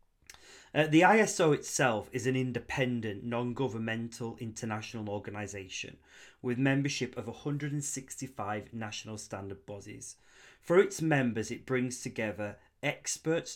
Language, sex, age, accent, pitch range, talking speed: English, male, 30-49, British, 110-135 Hz, 105 wpm